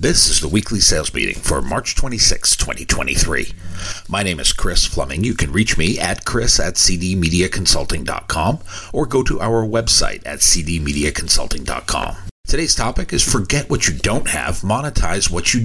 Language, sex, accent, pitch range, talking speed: English, male, American, 85-110 Hz, 155 wpm